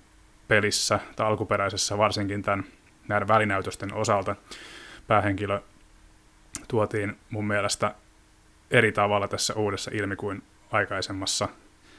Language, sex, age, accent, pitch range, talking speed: Finnish, male, 30-49, native, 100-115 Hz, 95 wpm